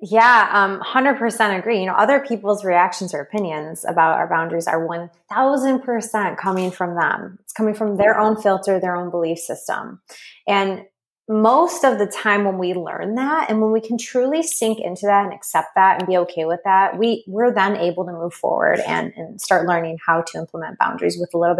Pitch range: 175-220 Hz